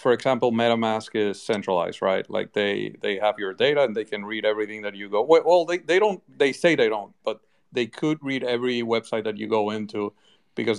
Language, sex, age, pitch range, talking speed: Spanish, male, 40-59, 110-135 Hz, 205 wpm